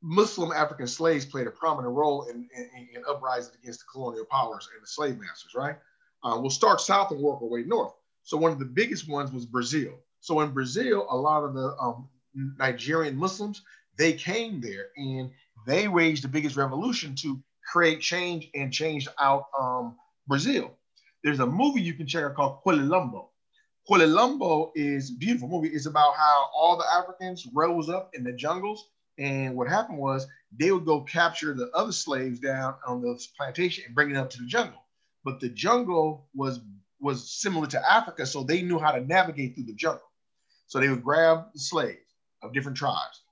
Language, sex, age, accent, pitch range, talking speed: English, male, 40-59, American, 130-170 Hz, 190 wpm